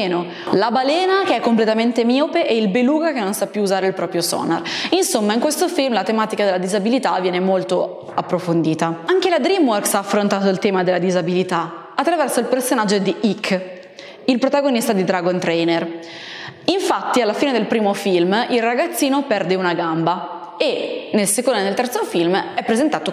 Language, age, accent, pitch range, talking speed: Italian, 20-39, native, 185-265 Hz, 175 wpm